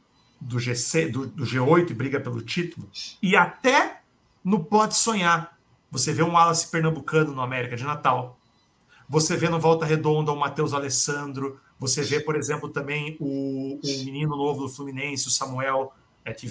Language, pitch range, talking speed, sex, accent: Portuguese, 130-160 Hz, 165 wpm, male, Brazilian